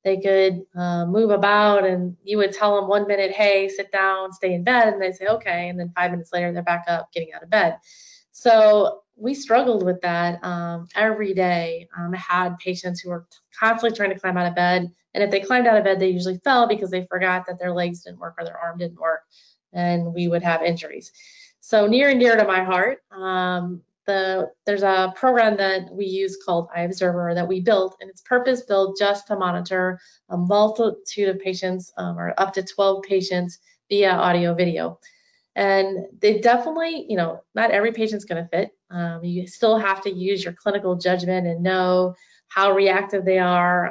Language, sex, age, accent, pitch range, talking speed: English, female, 20-39, American, 175-205 Hz, 200 wpm